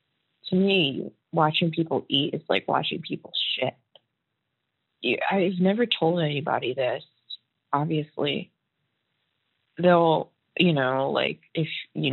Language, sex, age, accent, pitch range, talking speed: English, female, 20-39, American, 140-175 Hz, 110 wpm